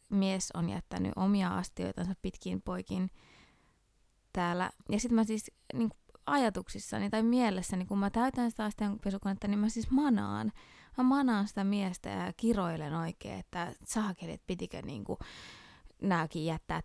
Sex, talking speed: female, 140 wpm